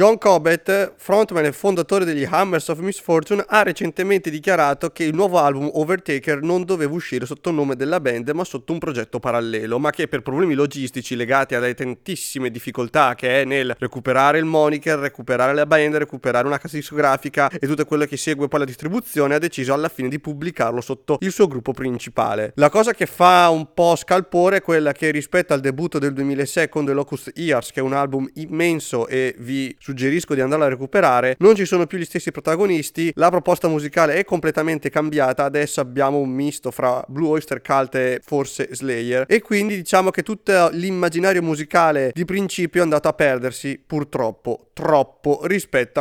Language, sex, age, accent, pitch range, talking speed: English, male, 30-49, Italian, 135-170 Hz, 185 wpm